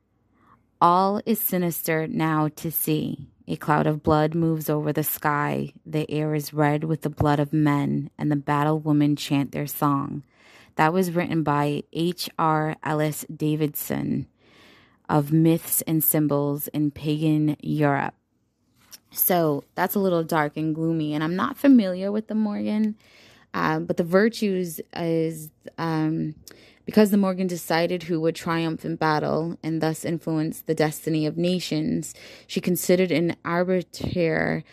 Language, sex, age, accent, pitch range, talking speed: English, female, 20-39, American, 150-180 Hz, 145 wpm